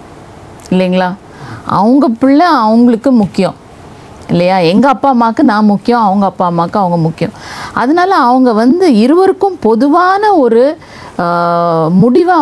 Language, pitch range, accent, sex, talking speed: Tamil, 180-245 Hz, native, female, 110 wpm